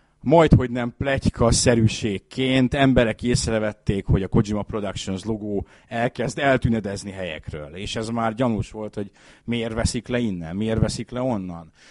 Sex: male